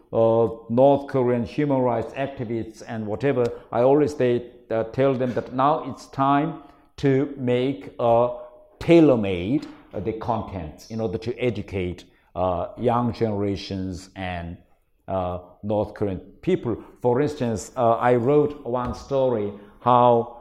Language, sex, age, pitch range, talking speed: English, male, 60-79, 110-125 Hz, 125 wpm